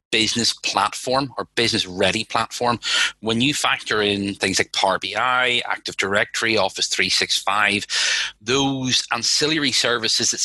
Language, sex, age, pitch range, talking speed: English, male, 30-49, 95-120 Hz, 150 wpm